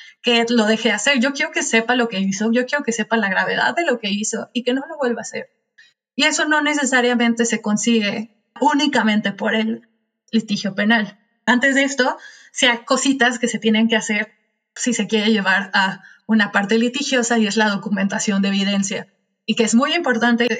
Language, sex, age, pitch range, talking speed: Spanish, female, 20-39, 215-240 Hz, 200 wpm